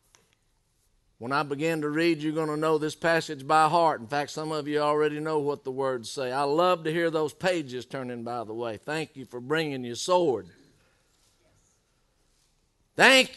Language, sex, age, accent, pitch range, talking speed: English, male, 50-69, American, 135-165 Hz, 185 wpm